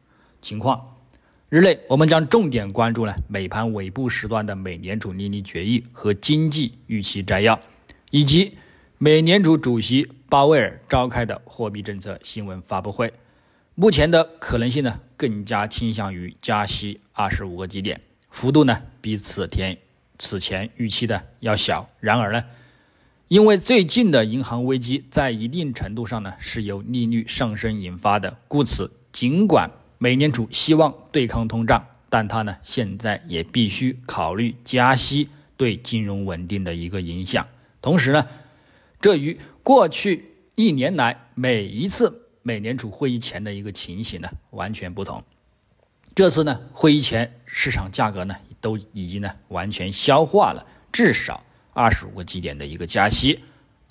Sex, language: male, Chinese